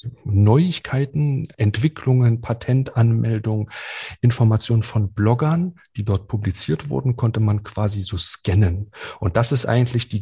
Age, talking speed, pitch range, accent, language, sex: 40-59, 115 wpm, 105-130 Hz, German, German, male